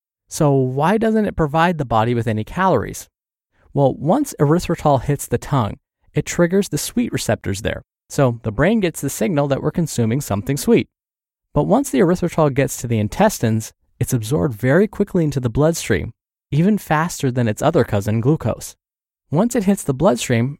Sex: male